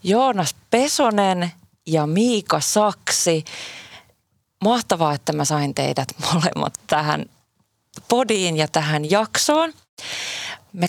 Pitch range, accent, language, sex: 165-220 Hz, native, Finnish, female